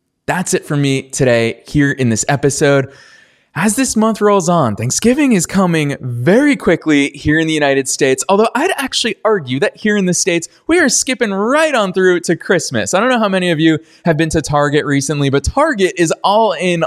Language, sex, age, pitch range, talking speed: English, male, 20-39, 135-190 Hz, 205 wpm